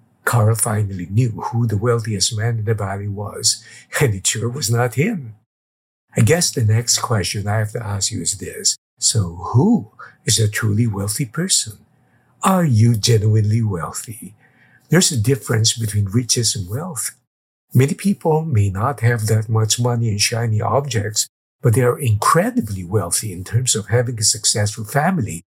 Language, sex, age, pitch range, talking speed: English, male, 50-69, 110-130 Hz, 165 wpm